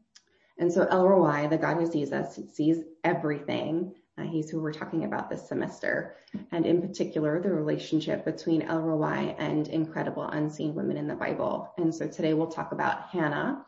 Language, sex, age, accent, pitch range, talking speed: English, female, 20-39, American, 155-180 Hz, 170 wpm